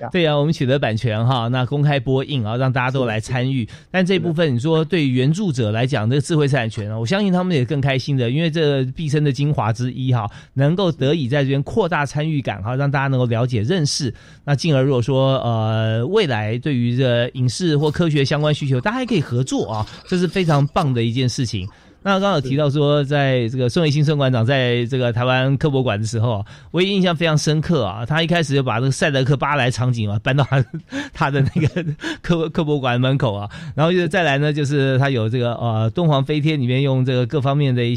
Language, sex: Chinese, male